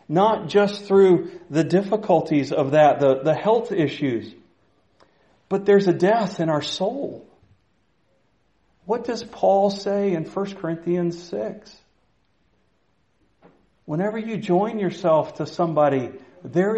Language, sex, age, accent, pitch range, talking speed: English, male, 40-59, American, 160-200 Hz, 120 wpm